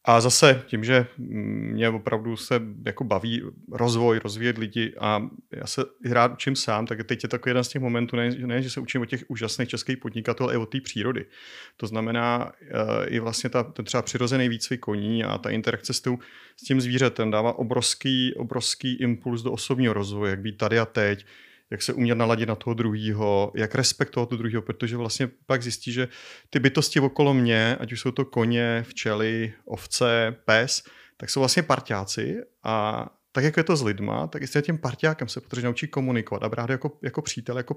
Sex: male